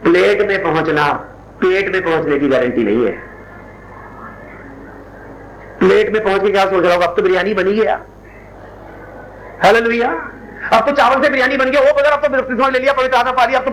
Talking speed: 180 wpm